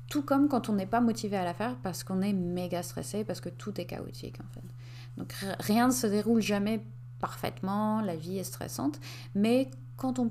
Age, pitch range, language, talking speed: 30-49, 125-210 Hz, French, 215 wpm